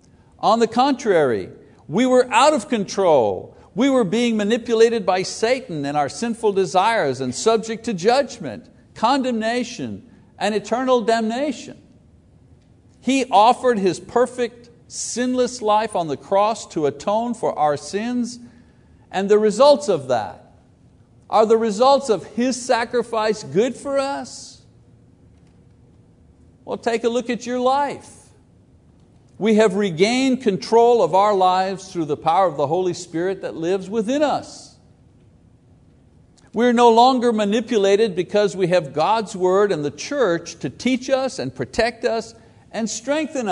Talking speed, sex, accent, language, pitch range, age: 135 wpm, male, American, English, 185-245 Hz, 50-69